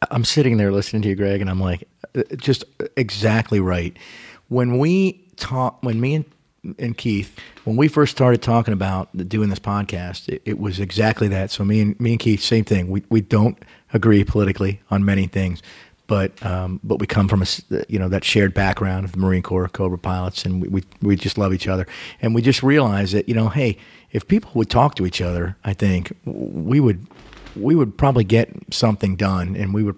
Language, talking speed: English, 210 wpm